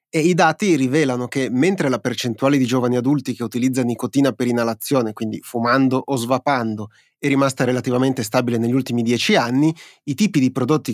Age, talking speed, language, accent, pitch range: 30-49, 175 wpm, Italian, native, 120-135 Hz